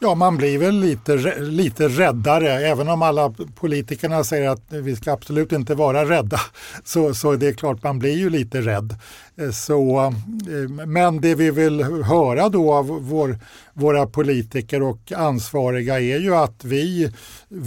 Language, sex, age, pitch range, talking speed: Swedish, male, 50-69, 135-165 Hz, 150 wpm